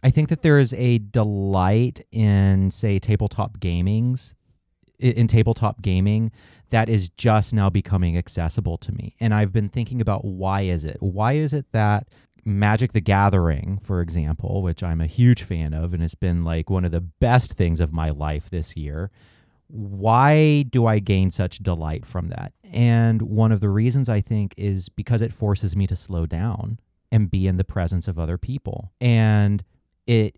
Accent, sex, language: American, male, English